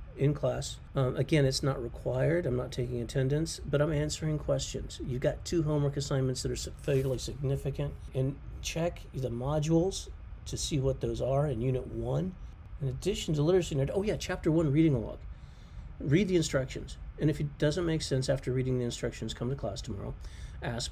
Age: 40-59